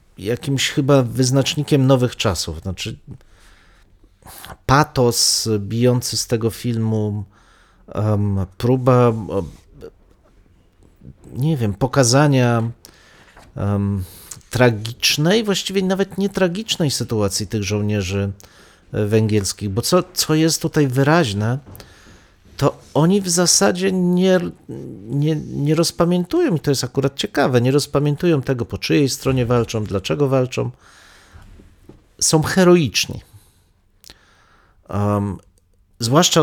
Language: Polish